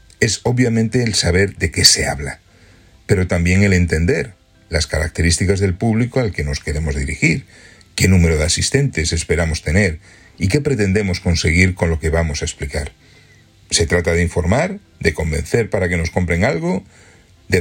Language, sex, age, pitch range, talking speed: Spanish, male, 40-59, 85-105 Hz, 165 wpm